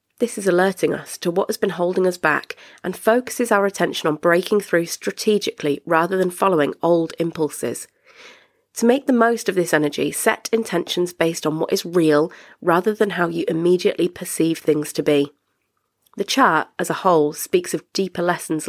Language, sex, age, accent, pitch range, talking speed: English, female, 30-49, British, 160-205 Hz, 180 wpm